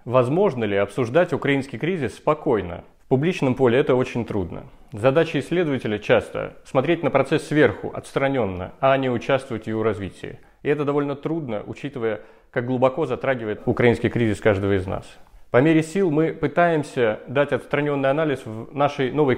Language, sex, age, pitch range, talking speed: Russian, male, 30-49, 120-145 Hz, 155 wpm